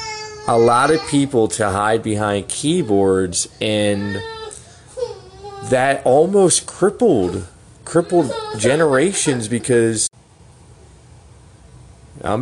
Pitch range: 95-115 Hz